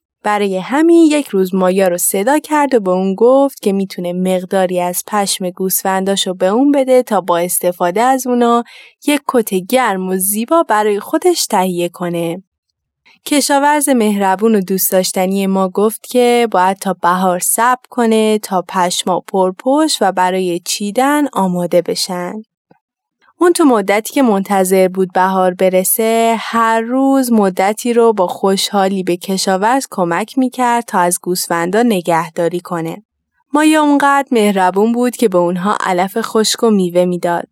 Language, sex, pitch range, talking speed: Persian, female, 185-245 Hz, 145 wpm